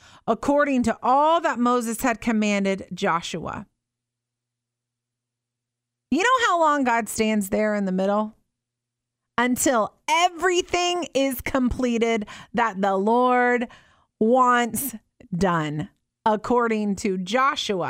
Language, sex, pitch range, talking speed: English, female, 220-330 Hz, 100 wpm